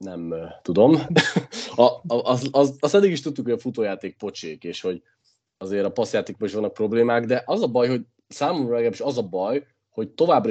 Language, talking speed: Hungarian, 200 wpm